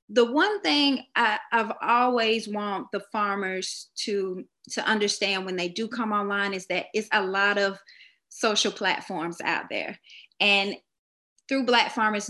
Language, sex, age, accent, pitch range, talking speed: English, female, 20-39, American, 205-245 Hz, 145 wpm